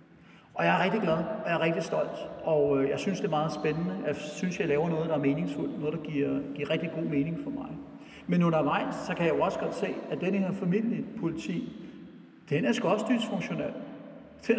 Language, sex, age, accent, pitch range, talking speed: Danish, male, 60-79, native, 145-200 Hz, 215 wpm